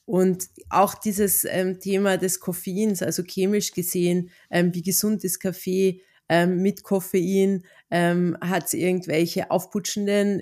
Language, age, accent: German, 30-49, German